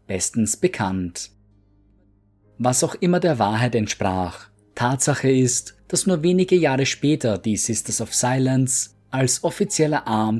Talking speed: 125 wpm